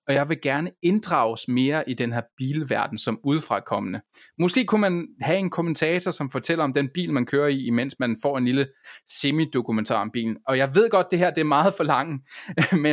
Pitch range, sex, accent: 130-175 Hz, male, native